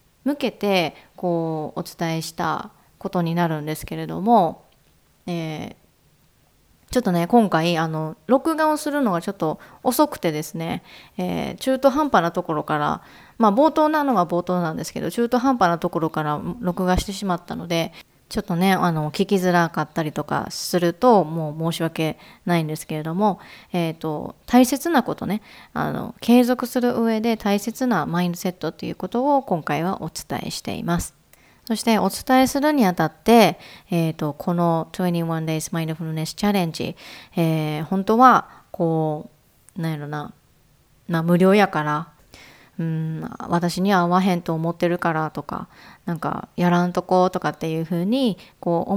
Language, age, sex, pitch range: Japanese, 20-39, female, 160-225 Hz